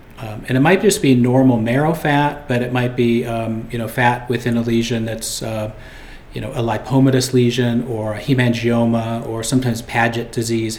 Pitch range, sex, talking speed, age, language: 115-135 Hz, male, 185 wpm, 40-59, English